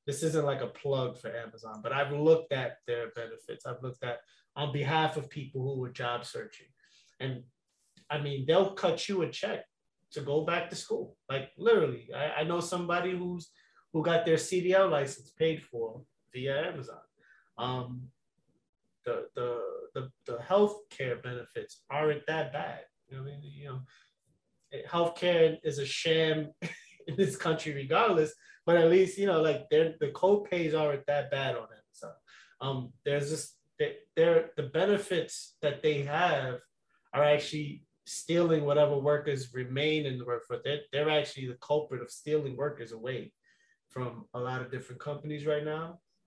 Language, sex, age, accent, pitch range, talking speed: English, male, 20-39, American, 135-175 Hz, 165 wpm